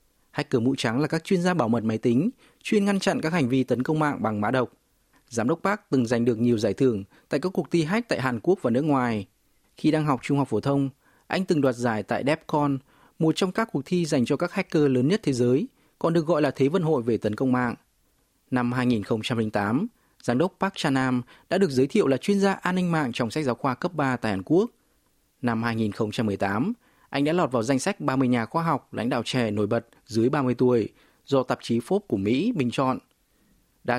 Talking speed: 235 wpm